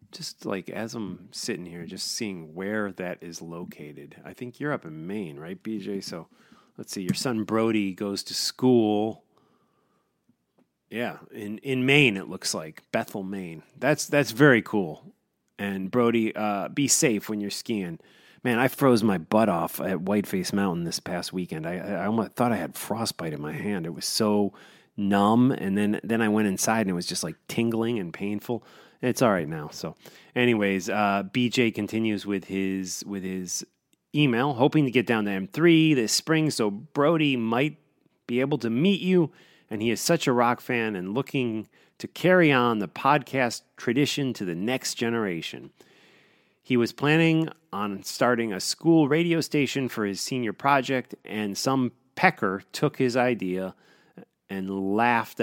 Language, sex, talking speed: English, male, 175 wpm